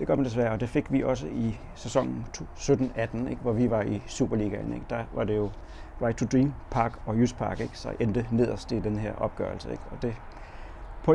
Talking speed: 220 wpm